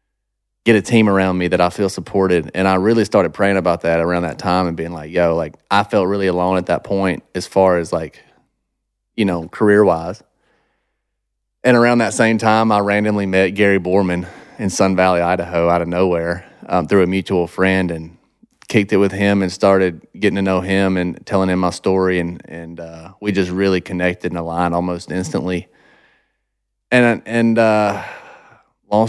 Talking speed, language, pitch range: 190 wpm, English, 90-105 Hz